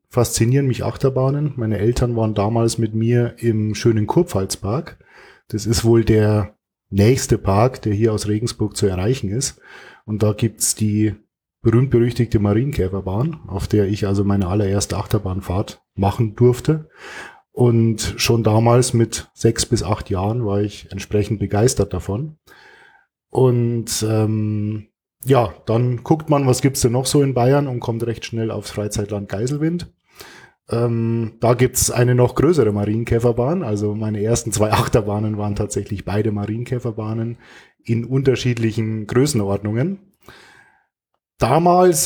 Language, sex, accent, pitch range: German, male, German, 105-125 Hz